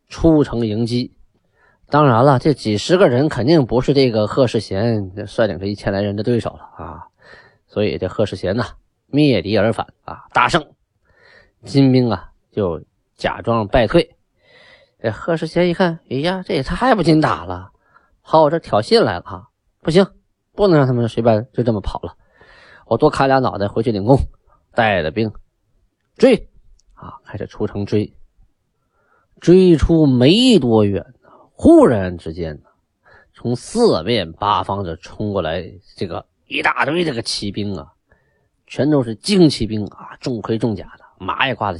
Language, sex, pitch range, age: Chinese, male, 100-140 Hz, 20-39